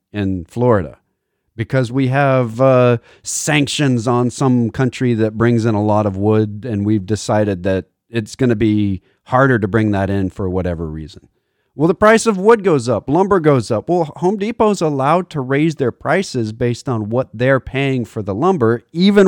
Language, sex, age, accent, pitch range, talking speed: English, male, 40-59, American, 105-145 Hz, 190 wpm